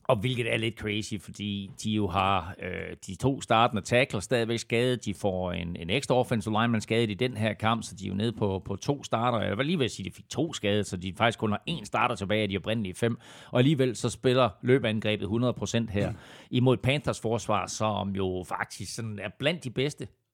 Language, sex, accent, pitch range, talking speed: Danish, male, native, 105-125 Hz, 220 wpm